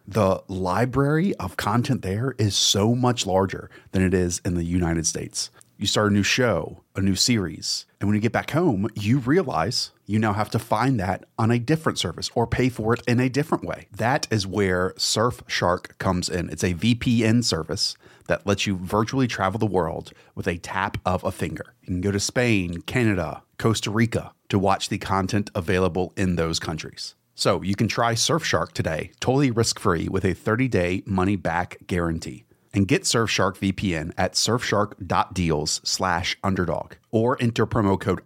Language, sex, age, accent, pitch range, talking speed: English, male, 30-49, American, 95-120 Hz, 175 wpm